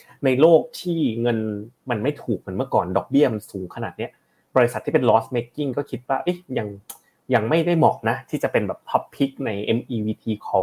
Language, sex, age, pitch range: Thai, male, 20-39, 110-145 Hz